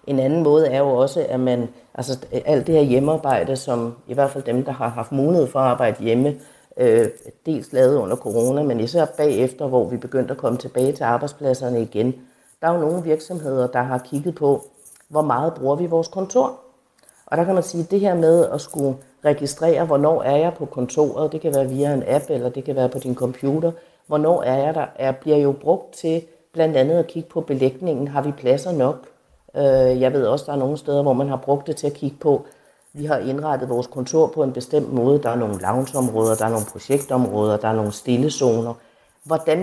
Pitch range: 130-155 Hz